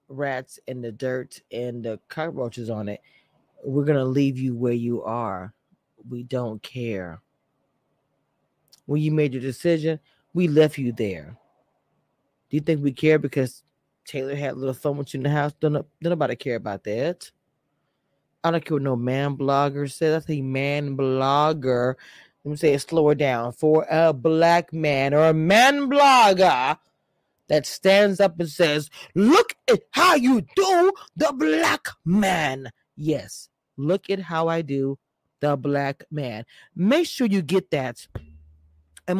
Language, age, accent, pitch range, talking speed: English, 20-39, American, 135-175 Hz, 160 wpm